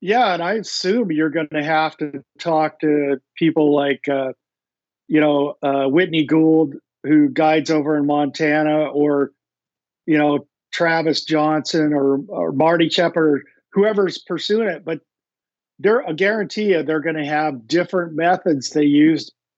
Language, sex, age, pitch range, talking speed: English, male, 50-69, 150-180 Hz, 150 wpm